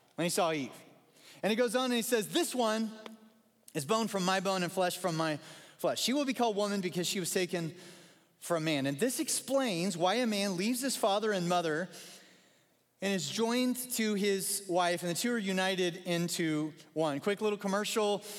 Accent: American